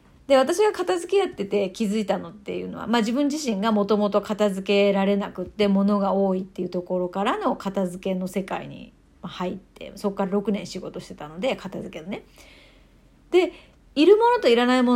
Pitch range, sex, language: 200-285 Hz, female, Japanese